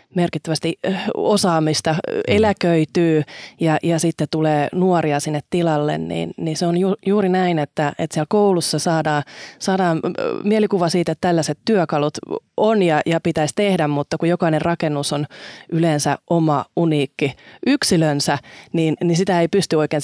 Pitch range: 155-185 Hz